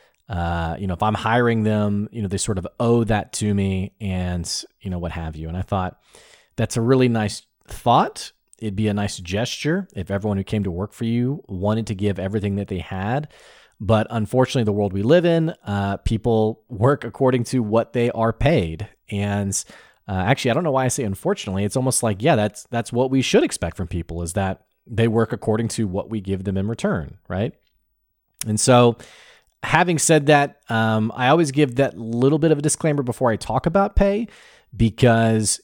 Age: 30-49